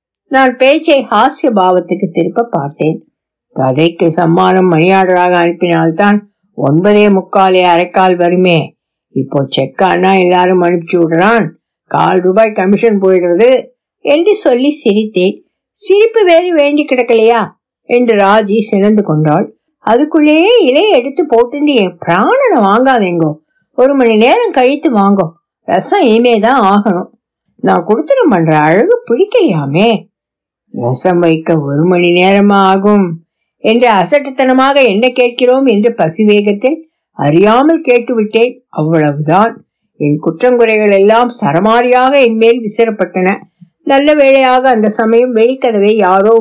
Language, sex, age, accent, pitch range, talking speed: Tamil, female, 60-79, native, 180-250 Hz, 90 wpm